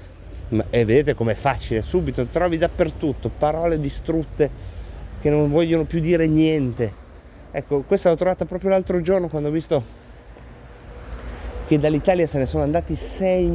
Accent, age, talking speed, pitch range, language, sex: native, 30-49, 140 wpm, 100-160 Hz, Italian, male